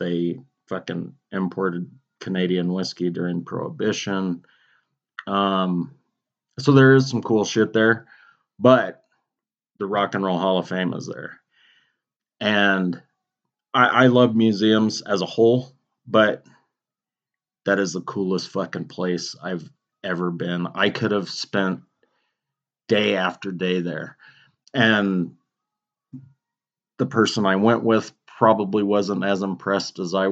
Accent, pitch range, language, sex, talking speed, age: American, 95-125 Hz, English, male, 125 wpm, 30-49